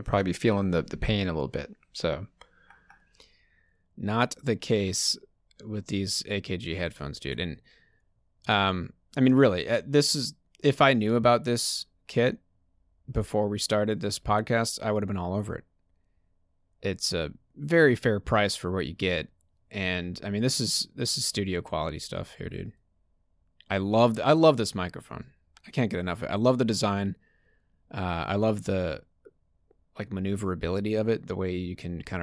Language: English